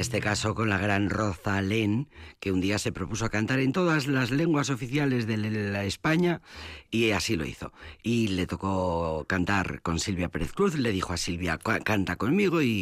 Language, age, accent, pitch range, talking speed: Spanish, 40-59, Spanish, 90-130 Hz, 195 wpm